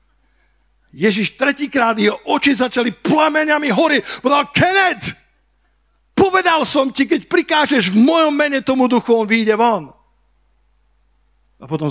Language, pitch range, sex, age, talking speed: Slovak, 120-175 Hz, male, 50-69, 120 wpm